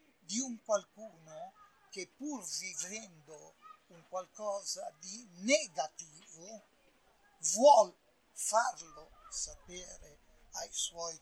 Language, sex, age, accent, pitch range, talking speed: Italian, male, 60-79, native, 175-240 Hz, 80 wpm